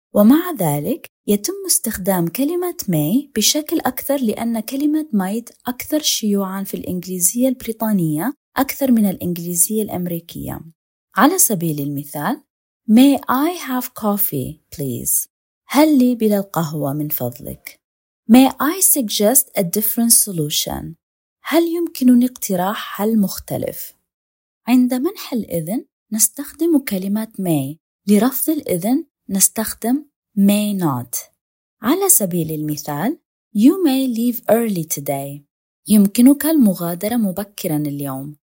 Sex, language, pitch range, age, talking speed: female, Arabic, 180-255 Hz, 20-39, 105 wpm